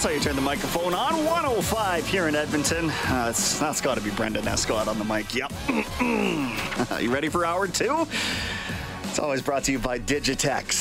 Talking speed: 190 wpm